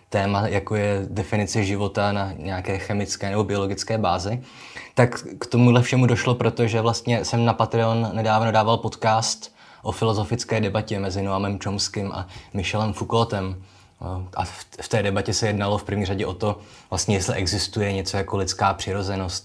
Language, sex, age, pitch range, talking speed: Czech, male, 20-39, 100-115 Hz, 155 wpm